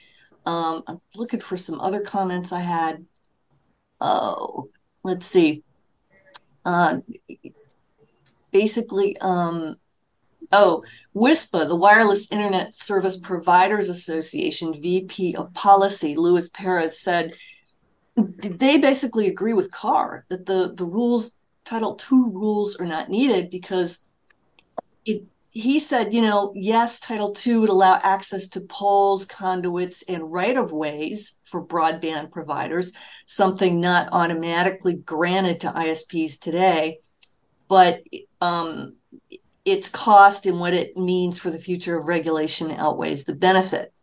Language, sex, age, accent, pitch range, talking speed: English, female, 40-59, American, 170-200 Hz, 120 wpm